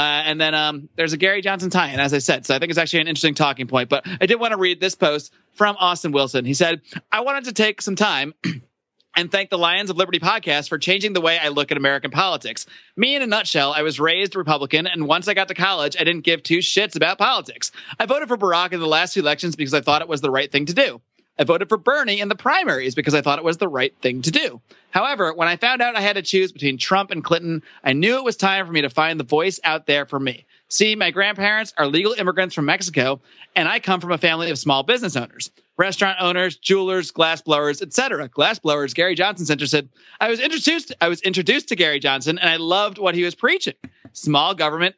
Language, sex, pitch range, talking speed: English, male, 150-195 Hz, 250 wpm